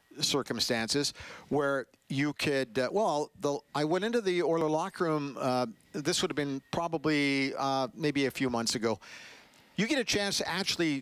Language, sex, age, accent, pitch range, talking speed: English, male, 50-69, American, 130-165 Hz, 170 wpm